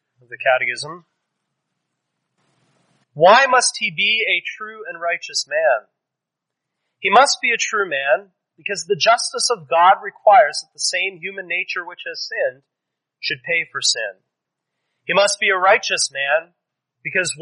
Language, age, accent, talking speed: English, 30-49, American, 150 wpm